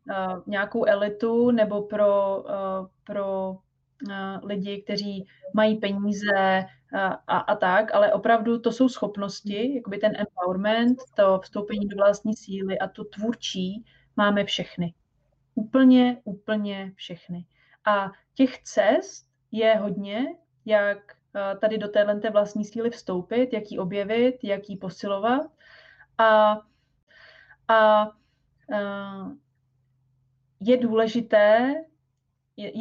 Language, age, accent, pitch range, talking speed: Czech, 20-39, native, 195-230 Hz, 115 wpm